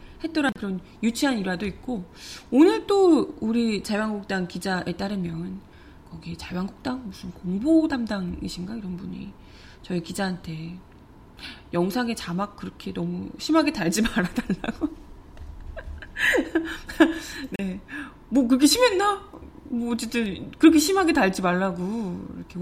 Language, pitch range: Korean, 185-270 Hz